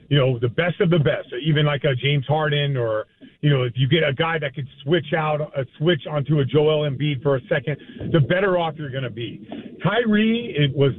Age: 40-59